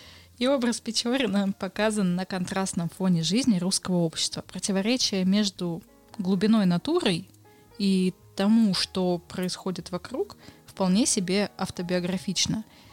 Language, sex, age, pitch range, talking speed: Russian, female, 20-39, 180-220 Hz, 100 wpm